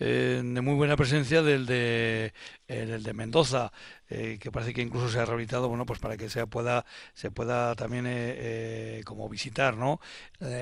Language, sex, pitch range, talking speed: Spanish, male, 115-140 Hz, 180 wpm